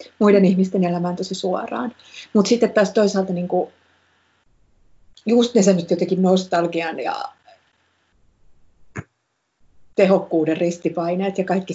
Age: 30-49